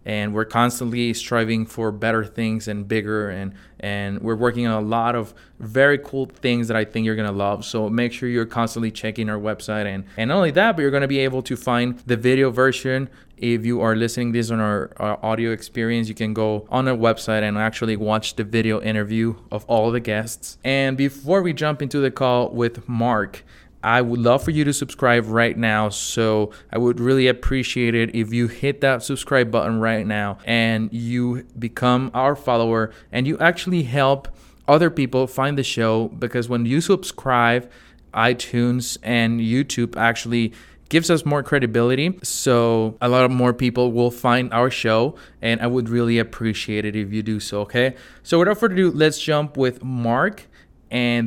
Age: 20-39